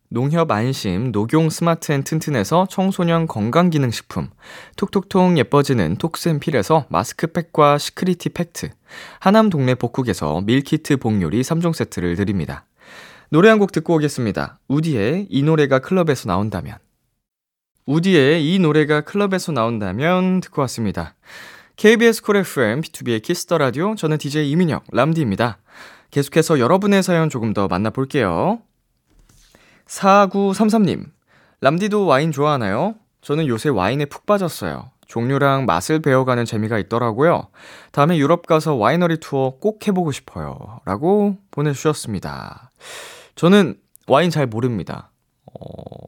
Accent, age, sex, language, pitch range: native, 20-39, male, Korean, 110-170 Hz